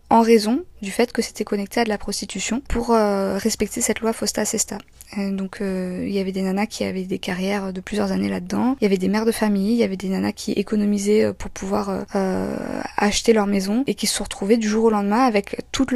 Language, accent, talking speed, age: French, French, 235 wpm, 20-39